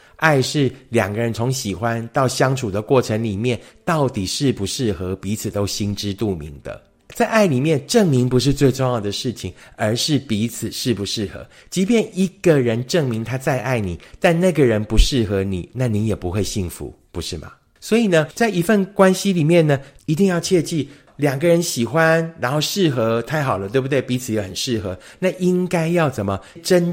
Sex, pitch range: male, 105-150 Hz